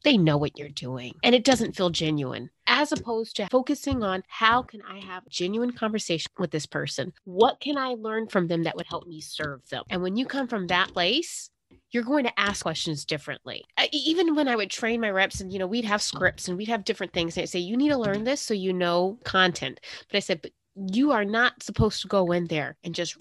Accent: American